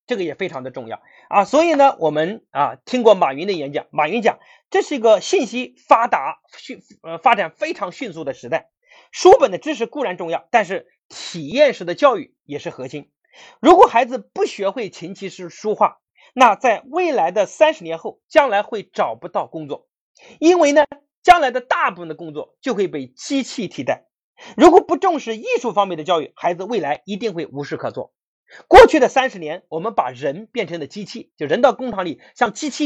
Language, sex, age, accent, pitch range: Chinese, male, 30-49, native, 180-300 Hz